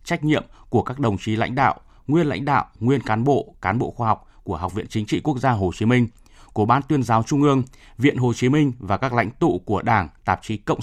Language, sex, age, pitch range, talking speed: Vietnamese, male, 20-39, 105-145 Hz, 260 wpm